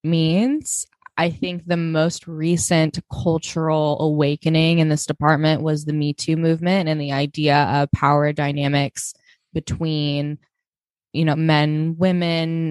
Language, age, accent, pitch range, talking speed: English, 20-39, American, 140-165 Hz, 125 wpm